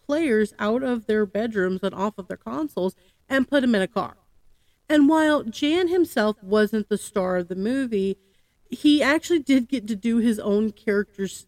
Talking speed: 190 wpm